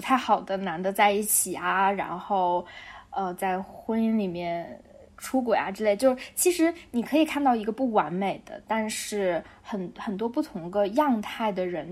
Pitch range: 195-250 Hz